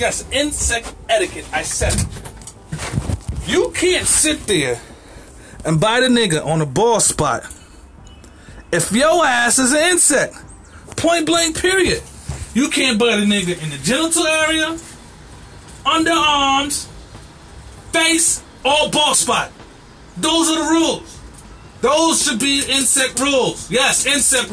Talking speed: 125 wpm